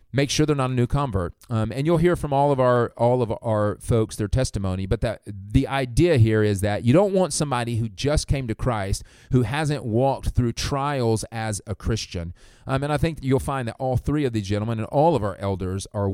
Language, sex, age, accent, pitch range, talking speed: English, male, 30-49, American, 95-125 Hz, 235 wpm